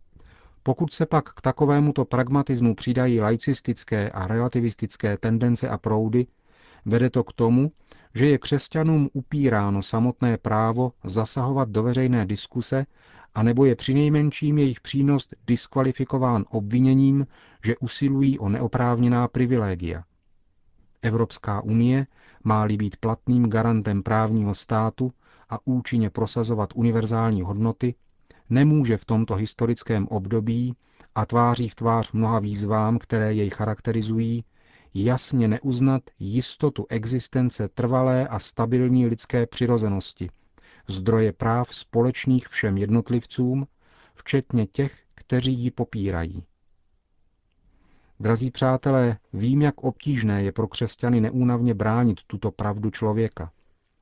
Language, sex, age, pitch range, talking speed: Czech, male, 40-59, 105-125 Hz, 110 wpm